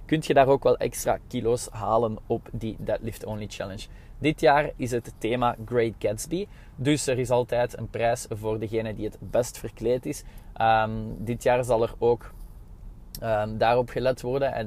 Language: Dutch